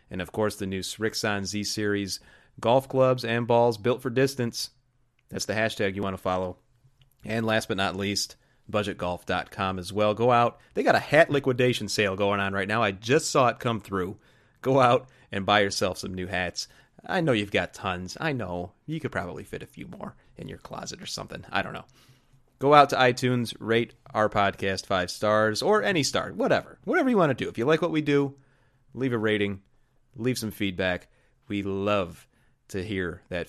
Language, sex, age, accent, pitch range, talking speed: English, male, 30-49, American, 100-130 Hz, 200 wpm